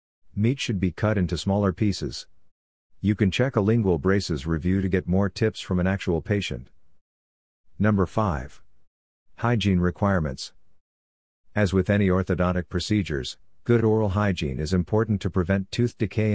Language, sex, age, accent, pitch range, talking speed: English, male, 50-69, American, 85-105 Hz, 145 wpm